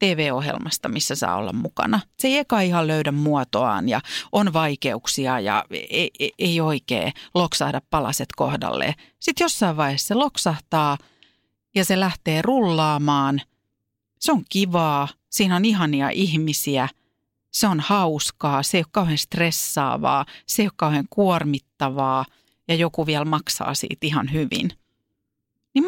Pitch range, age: 135-190 Hz, 40-59